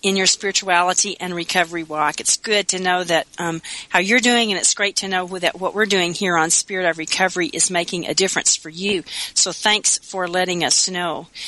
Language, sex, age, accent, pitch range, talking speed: English, female, 40-59, American, 175-200 Hz, 215 wpm